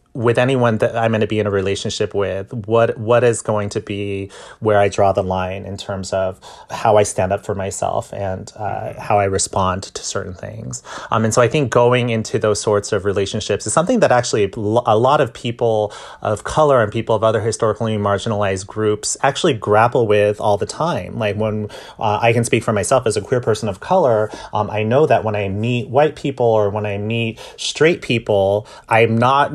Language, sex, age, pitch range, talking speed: English, male, 30-49, 105-120 Hz, 210 wpm